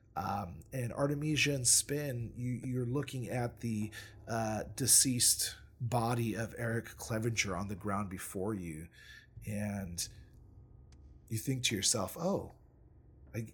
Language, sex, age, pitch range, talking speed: English, male, 40-59, 105-125 Hz, 115 wpm